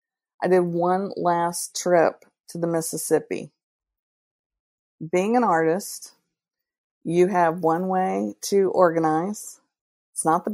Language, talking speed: English, 115 wpm